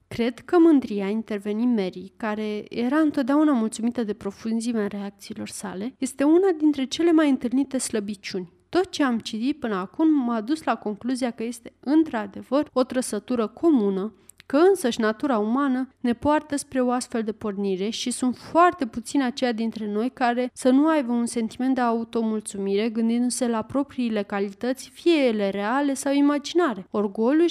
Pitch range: 220-275 Hz